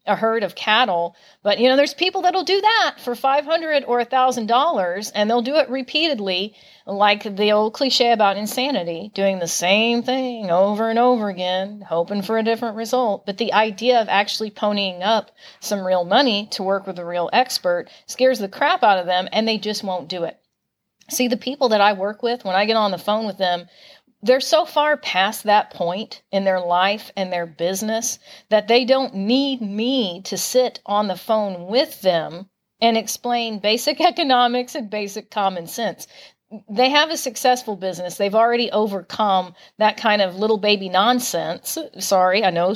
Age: 40-59